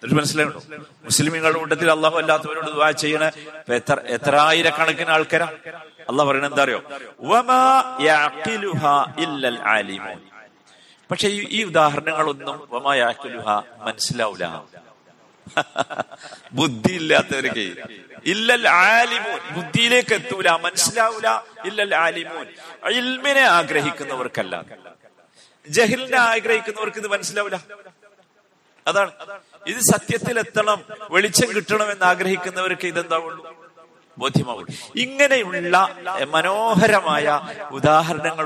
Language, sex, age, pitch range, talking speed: Malayalam, male, 50-69, 140-205 Hz, 50 wpm